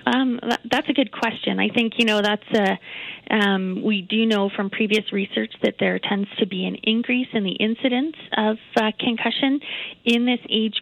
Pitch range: 180-215 Hz